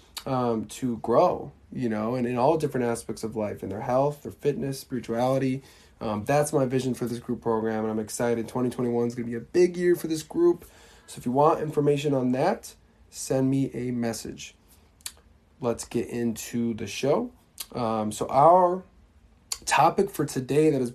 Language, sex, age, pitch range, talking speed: English, male, 20-39, 115-140 Hz, 185 wpm